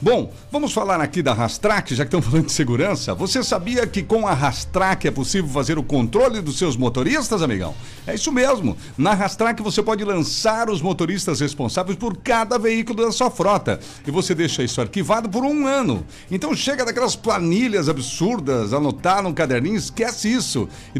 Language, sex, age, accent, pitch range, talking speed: Portuguese, male, 60-79, Brazilian, 140-215 Hz, 180 wpm